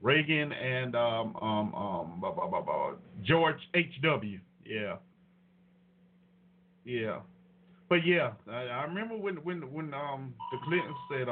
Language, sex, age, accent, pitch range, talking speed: English, male, 50-69, American, 145-185 Hz, 135 wpm